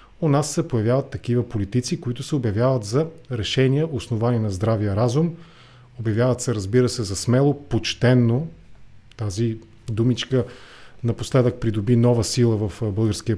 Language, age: English, 40-59